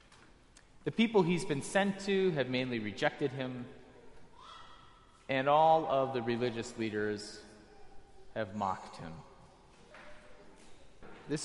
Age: 30-49